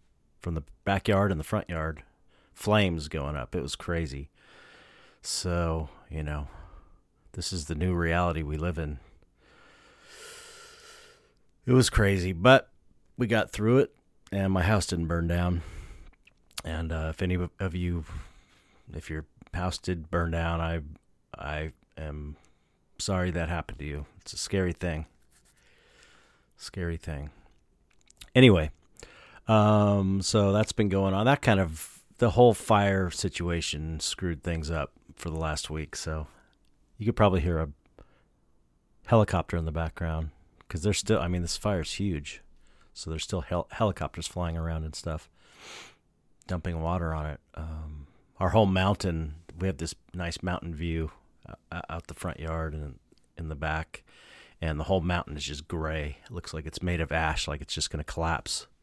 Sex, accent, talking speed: male, American, 155 wpm